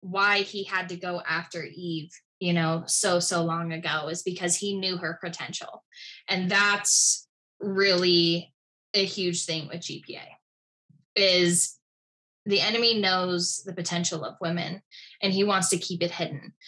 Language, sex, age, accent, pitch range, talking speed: English, female, 10-29, American, 175-200 Hz, 150 wpm